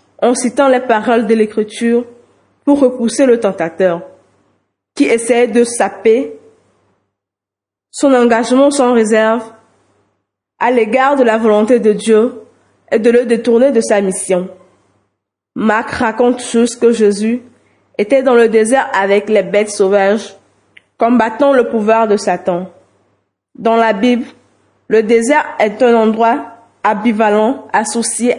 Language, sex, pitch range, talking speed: French, female, 205-245 Hz, 125 wpm